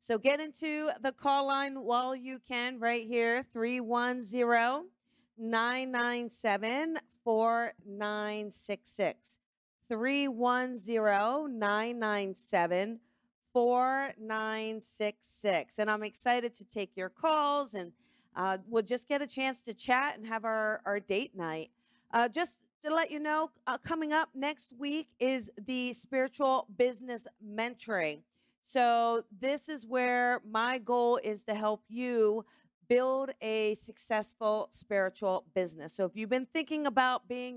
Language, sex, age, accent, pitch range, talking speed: English, female, 40-59, American, 210-255 Hz, 115 wpm